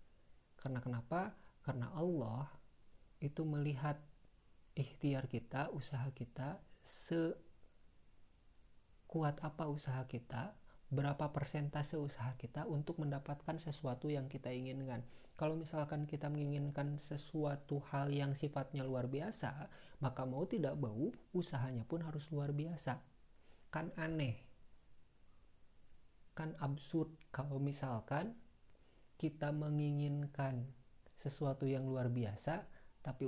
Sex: male